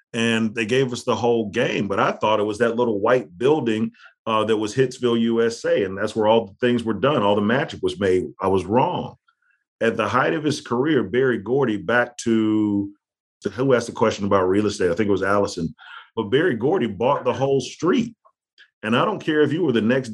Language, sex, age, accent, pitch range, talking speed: English, male, 40-59, American, 110-130 Hz, 225 wpm